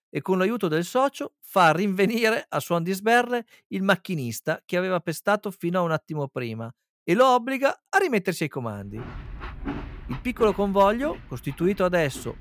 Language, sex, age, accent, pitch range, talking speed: Italian, male, 50-69, native, 140-210 Hz, 160 wpm